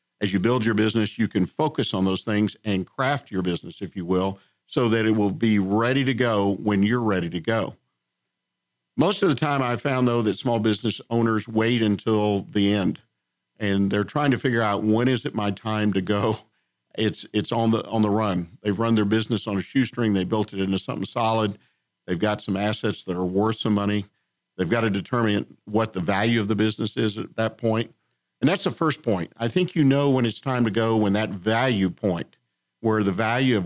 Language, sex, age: English, male, 50-69